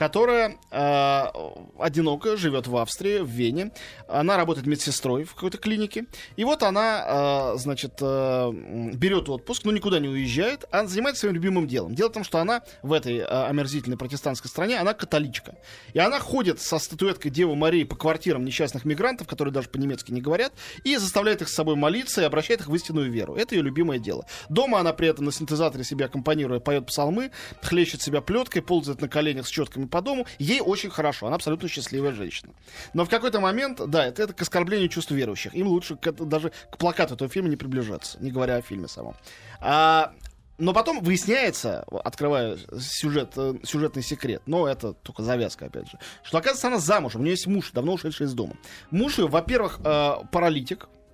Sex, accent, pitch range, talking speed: male, native, 140-190 Hz, 190 wpm